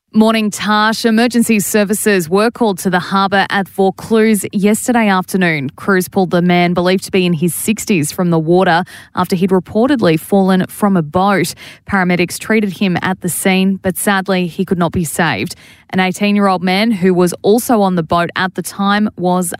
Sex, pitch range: female, 165-195 Hz